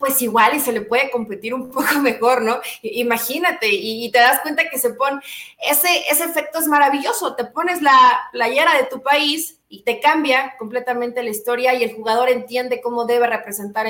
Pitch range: 235-315 Hz